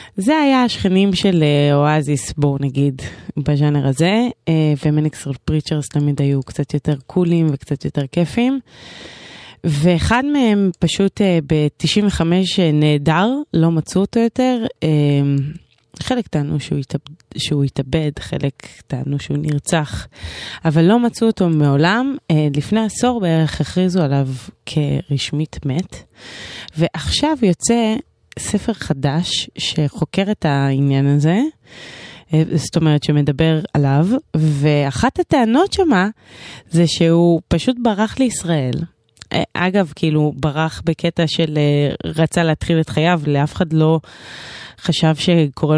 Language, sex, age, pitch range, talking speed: Hebrew, female, 20-39, 145-190 Hz, 105 wpm